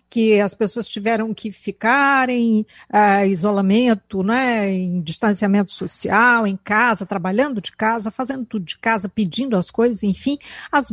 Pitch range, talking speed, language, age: 200-260 Hz, 145 wpm, Portuguese, 50-69